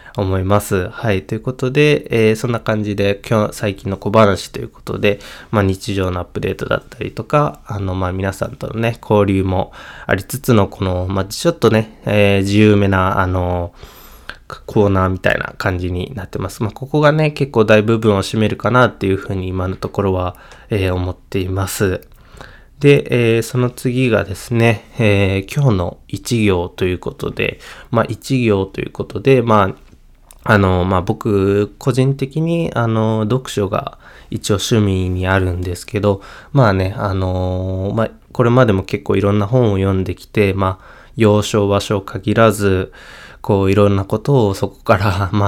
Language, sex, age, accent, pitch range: Japanese, male, 20-39, native, 95-115 Hz